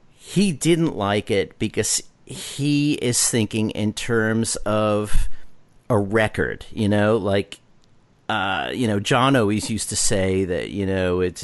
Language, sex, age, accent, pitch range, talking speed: English, male, 50-69, American, 95-115 Hz, 145 wpm